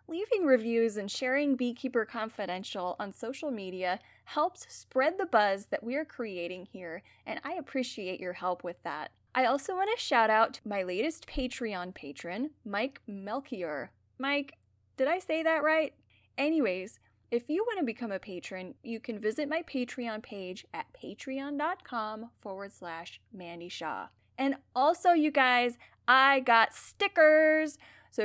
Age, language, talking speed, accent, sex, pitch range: 10-29, English, 155 wpm, American, female, 210-295 Hz